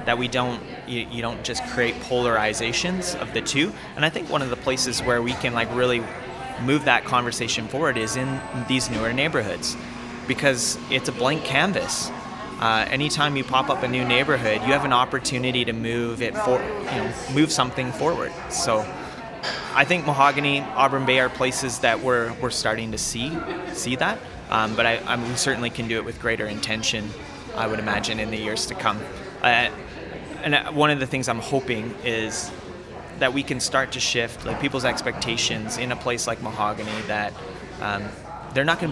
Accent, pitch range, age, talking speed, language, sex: American, 115-130 Hz, 30-49, 195 wpm, English, male